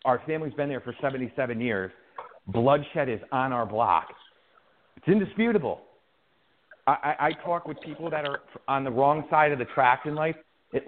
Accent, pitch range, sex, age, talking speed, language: American, 125-155 Hz, male, 40-59, 170 wpm, English